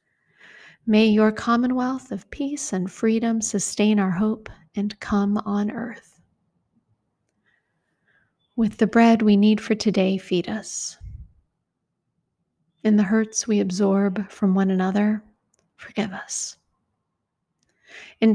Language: English